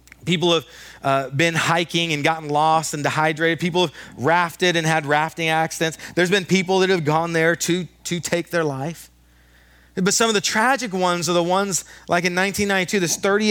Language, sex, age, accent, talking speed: English, male, 30-49, American, 180 wpm